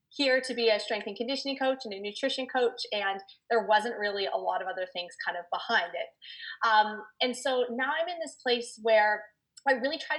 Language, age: English, 20-39